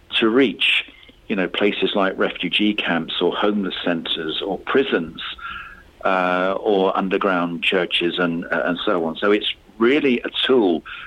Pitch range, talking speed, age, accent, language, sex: 90-110 Hz, 145 wpm, 50-69, British, English, male